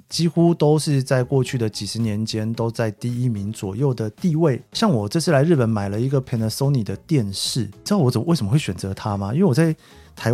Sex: male